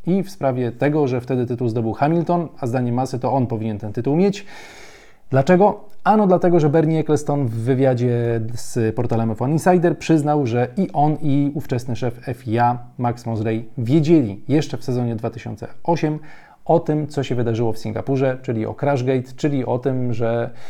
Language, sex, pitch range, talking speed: Polish, male, 115-145 Hz, 170 wpm